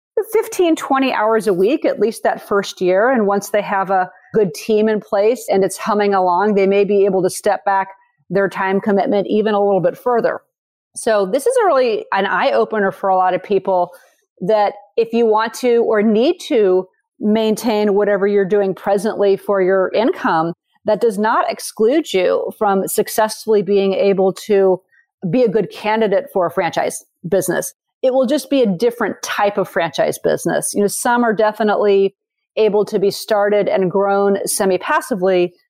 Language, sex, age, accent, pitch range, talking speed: English, female, 40-59, American, 195-225 Hz, 180 wpm